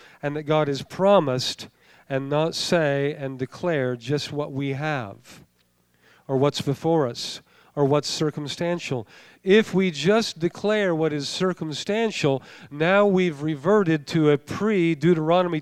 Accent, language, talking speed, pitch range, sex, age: American, English, 130 wpm, 155-190 Hz, male, 50-69